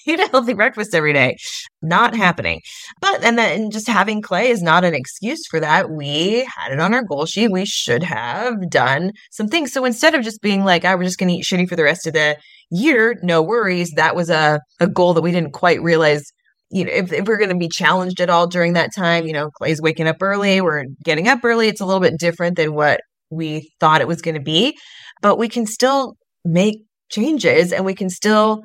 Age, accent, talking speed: 20-39, American, 235 wpm